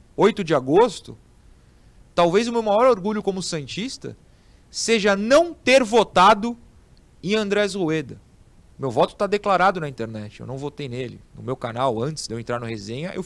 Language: Portuguese